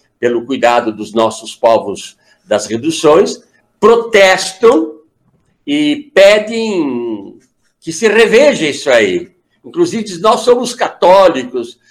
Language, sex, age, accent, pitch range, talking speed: Portuguese, male, 60-79, Brazilian, 150-245 Hz, 95 wpm